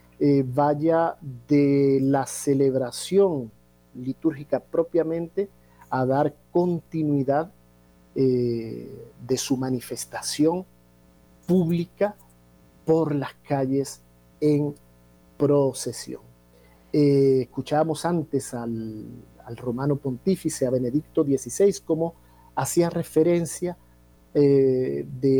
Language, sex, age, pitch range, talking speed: Spanish, male, 50-69, 120-150 Hz, 80 wpm